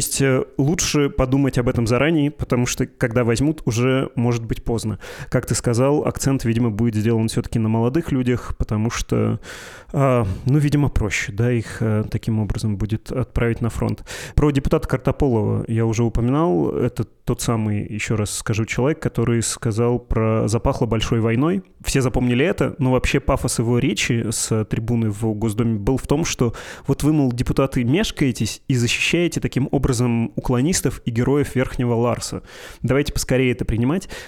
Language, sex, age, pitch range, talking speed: Russian, male, 20-39, 115-135 Hz, 165 wpm